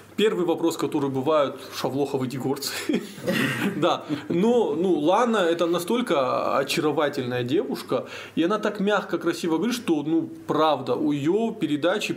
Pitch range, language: 135-215 Hz, Russian